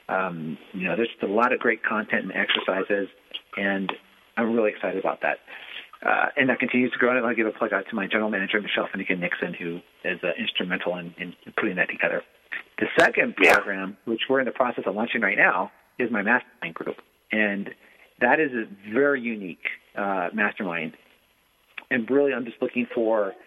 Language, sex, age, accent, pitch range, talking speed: English, male, 40-59, American, 105-125 Hz, 190 wpm